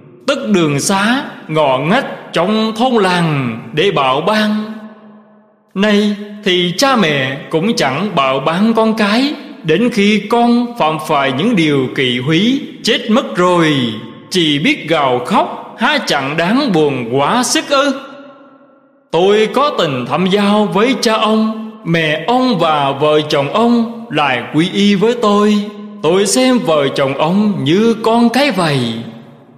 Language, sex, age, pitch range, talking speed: Vietnamese, male, 20-39, 160-235 Hz, 145 wpm